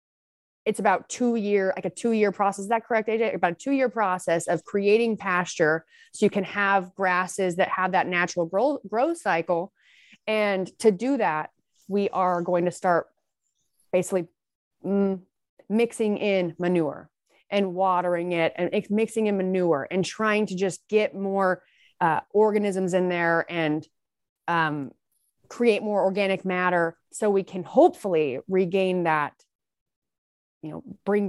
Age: 30-49